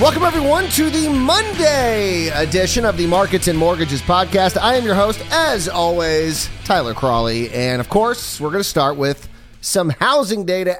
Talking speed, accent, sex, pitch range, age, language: 170 wpm, American, male, 130-180 Hz, 30-49, English